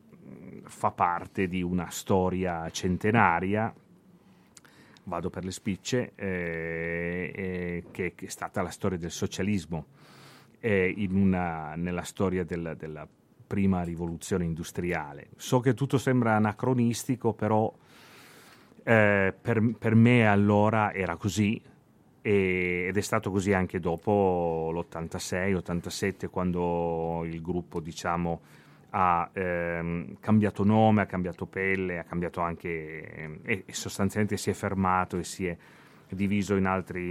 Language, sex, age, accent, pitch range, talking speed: Italian, male, 30-49, native, 85-105 Hz, 125 wpm